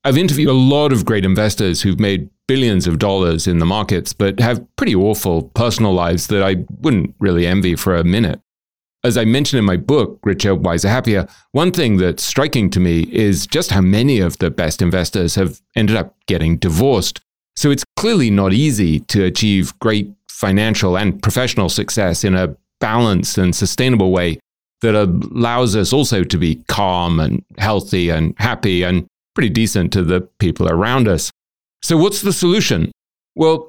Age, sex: 30-49, male